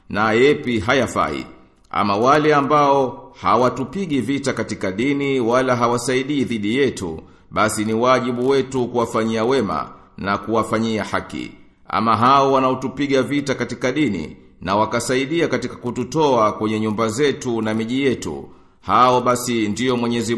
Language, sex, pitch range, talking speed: Swahili, male, 110-130 Hz, 125 wpm